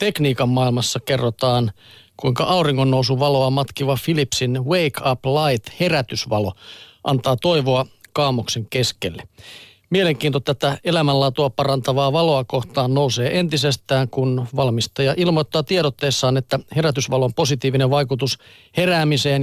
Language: Finnish